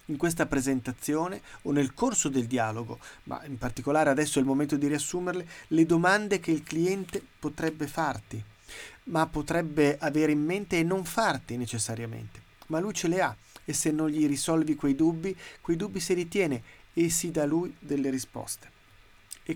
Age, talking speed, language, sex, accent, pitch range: 30-49, 170 wpm, Italian, male, native, 130-165 Hz